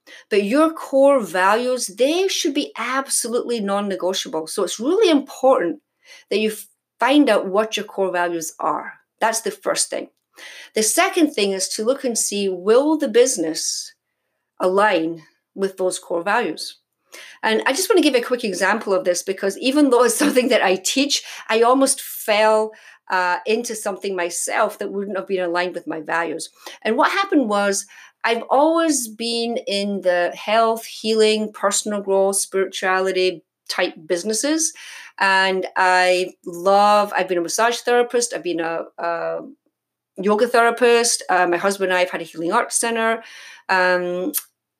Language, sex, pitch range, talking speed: English, female, 185-245 Hz, 160 wpm